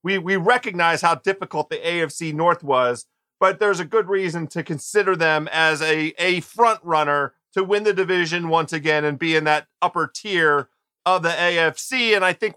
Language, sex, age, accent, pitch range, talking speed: English, male, 40-59, American, 150-185 Hz, 190 wpm